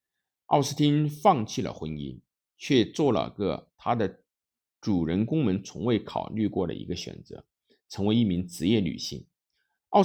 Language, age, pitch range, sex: Chinese, 50-69, 90-135 Hz, male